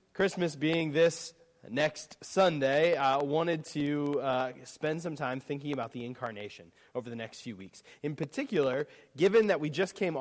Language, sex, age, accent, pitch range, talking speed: English, male, 30-49, American, 125-160 Hz, 165 wpm